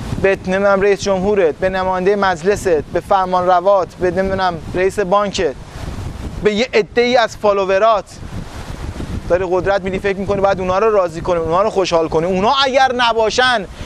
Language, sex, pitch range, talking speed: Persian, male, 190-265 Hz, 155 wpm